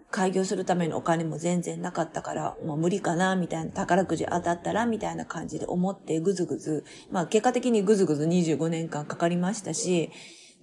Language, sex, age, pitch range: Japanese, female, 30-49, 170-255 Hz